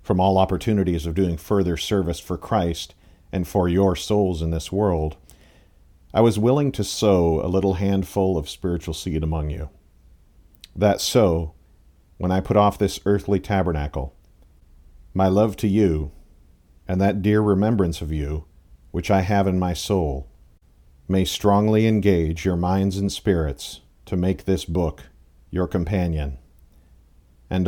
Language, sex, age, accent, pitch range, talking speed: English, male, 50-69, American, 75-100 Hz, 145 wpm